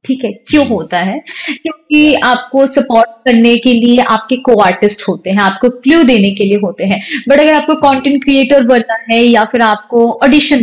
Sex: female